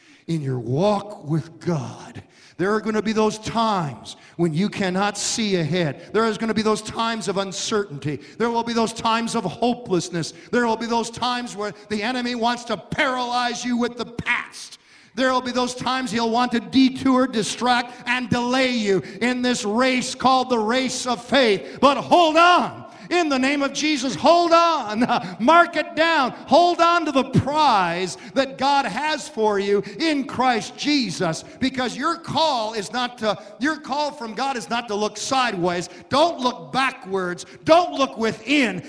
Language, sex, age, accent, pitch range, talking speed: English, male, 50-69, American, 205-270 Hz, 180 wpm